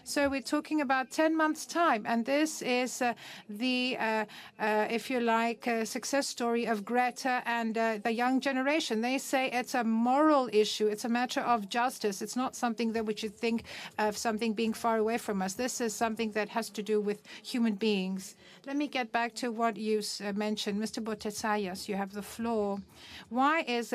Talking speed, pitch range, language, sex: 195 wpm, 215-255 Hz, Greek, female